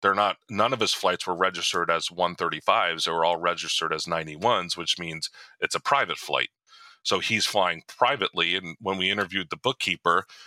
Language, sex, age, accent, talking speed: English, male, 30-49, American, 185 wpm